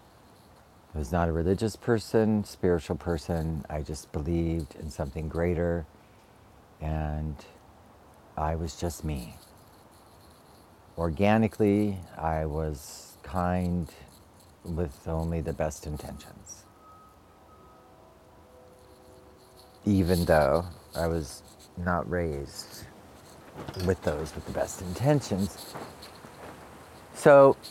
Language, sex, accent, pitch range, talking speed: English, male, American, 80-105 Hz, 90 wpm